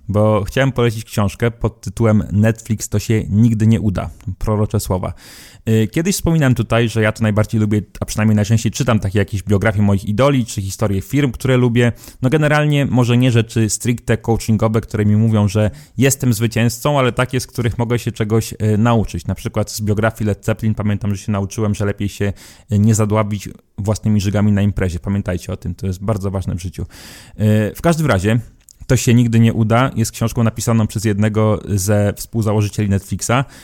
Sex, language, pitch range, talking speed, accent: male, Polish, 105-115 Hz, 180 wpm, native